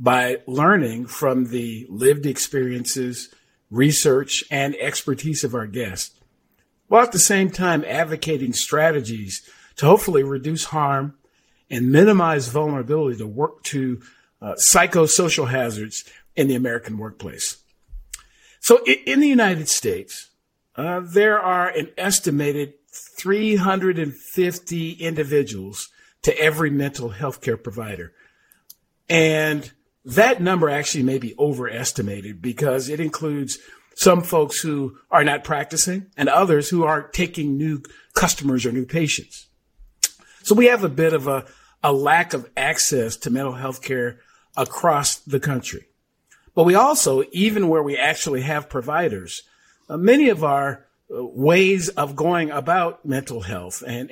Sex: male